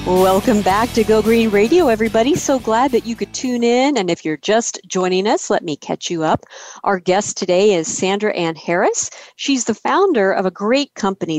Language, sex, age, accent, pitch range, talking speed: English, female, 50-69, American, 185-235 Hz, 205 wpm